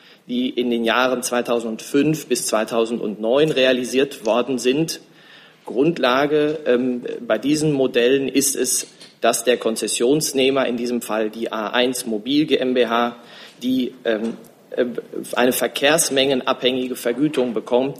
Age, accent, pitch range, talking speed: 40-59, German, 120-140 Hz, 110 wpm